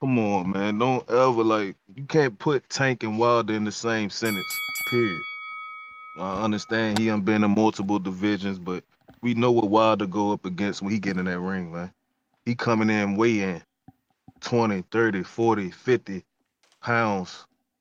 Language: English